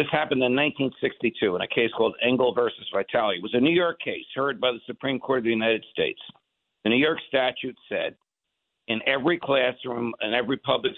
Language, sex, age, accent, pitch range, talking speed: English, male, 60-79, American, 115-135 Hz, 200 wpm